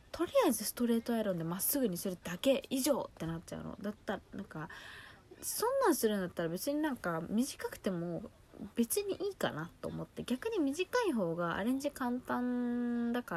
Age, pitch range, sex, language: 20-39, 175-245 Hz, female, Japanese